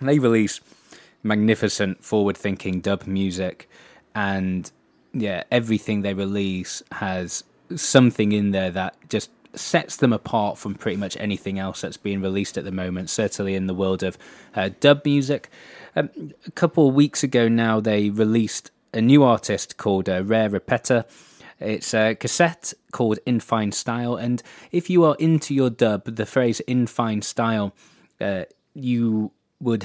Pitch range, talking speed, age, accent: 100-125 Hz, 160 wpm, 20-39, British